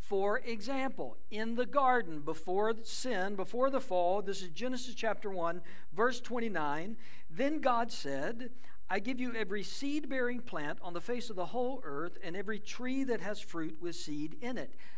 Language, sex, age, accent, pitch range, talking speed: English, male, 60-79, American, 170-250 Hz, 170 wpm